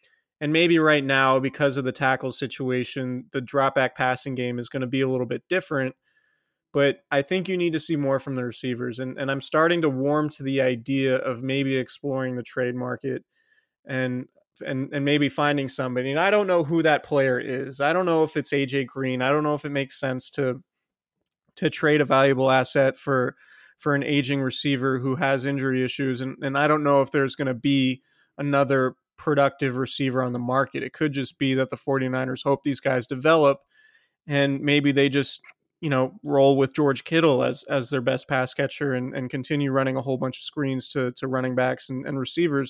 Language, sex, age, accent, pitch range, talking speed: English, male, 30-49, American, 130-150 Hz, 210 wpm